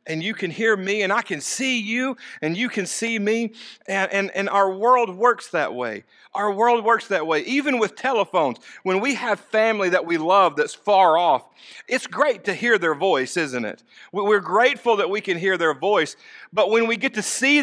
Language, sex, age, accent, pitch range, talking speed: English, male, 50-69, American, 205-255 Hz, 215 wpm